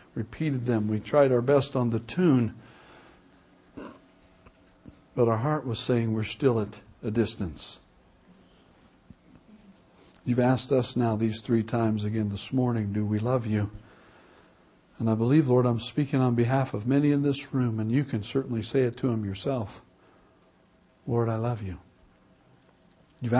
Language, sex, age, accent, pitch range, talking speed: English, male, 60-79, American, 110-145 Hz, 155 wpm